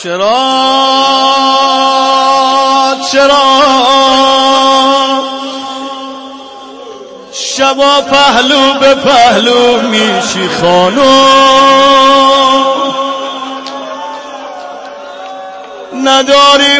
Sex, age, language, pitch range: male, 30-49, Persian, 240-270 Hz